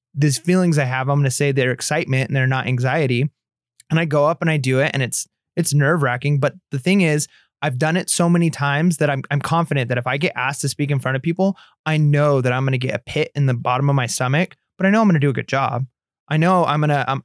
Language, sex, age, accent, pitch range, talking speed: English, male, 20-39, American, 135-160 Hz, 270 wpm